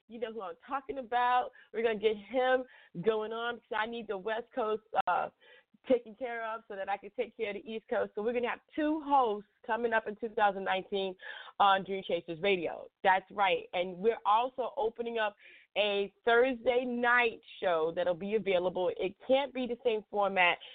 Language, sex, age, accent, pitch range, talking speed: English, female, 30-49, American, 185-235 Hz, 200 wpm